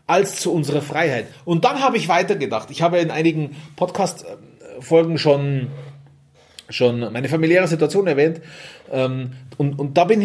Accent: German